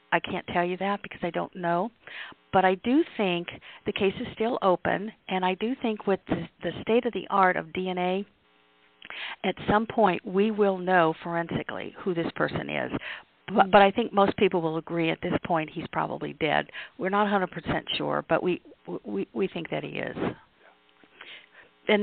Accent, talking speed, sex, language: American, 190 wpm, female, English